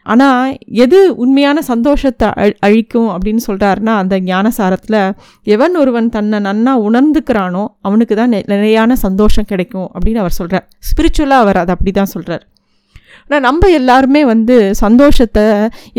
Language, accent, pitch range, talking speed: Tamil, native, 205-255 Hz, 130 wpm